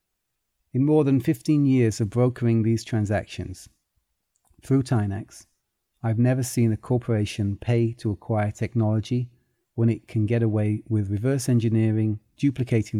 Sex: male